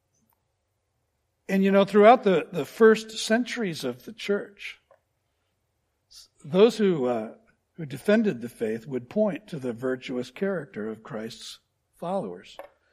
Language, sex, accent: English, male, American